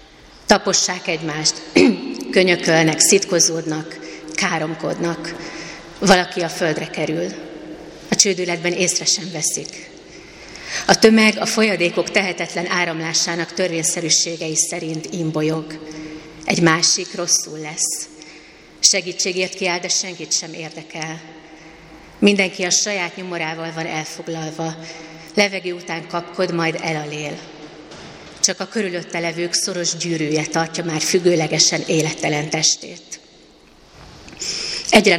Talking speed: 95 wpm